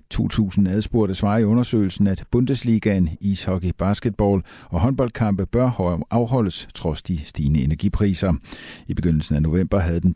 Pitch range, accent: 80-110 Hz, native